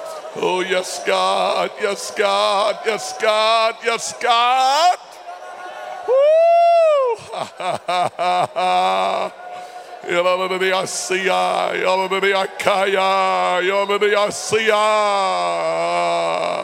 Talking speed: 65 wpm